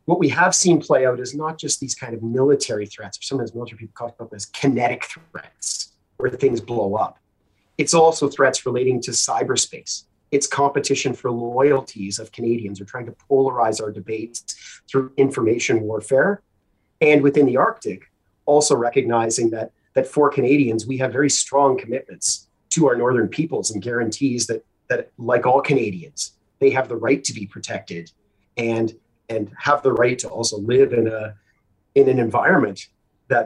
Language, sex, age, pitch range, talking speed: English, male, 30-49, 110-140 Hz, 170 wpm